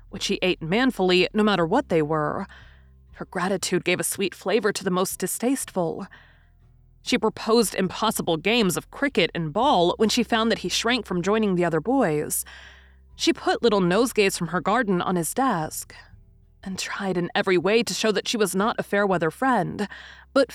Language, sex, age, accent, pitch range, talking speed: English, female, 30-49, American, 165-220 Hz, 185 wpm